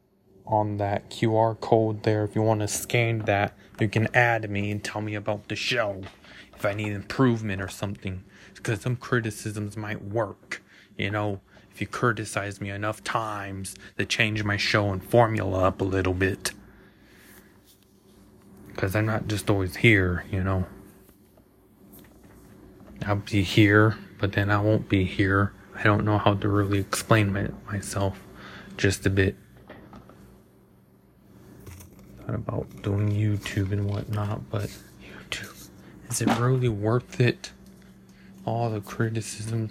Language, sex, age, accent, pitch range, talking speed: English, male, 20-39, American, 100-115 Hz, 140 wpm